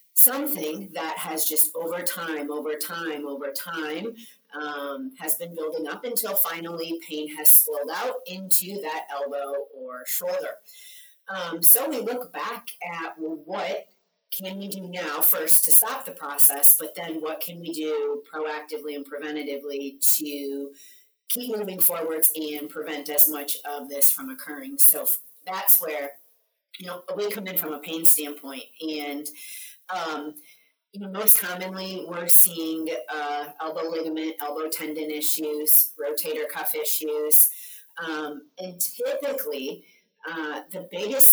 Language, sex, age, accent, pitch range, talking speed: English, female, 30-49, American, 150-225 Hz, 140 wpm